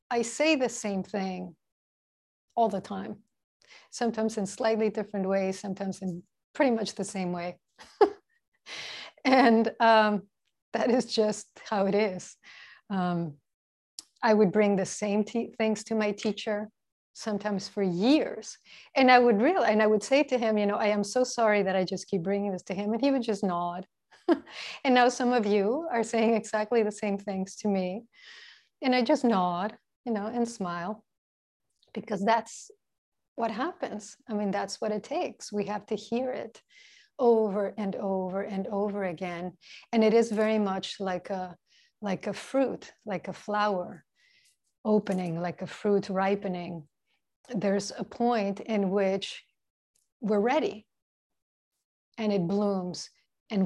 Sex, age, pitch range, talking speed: female, 30-49, 195-235 Hz, 160 wpm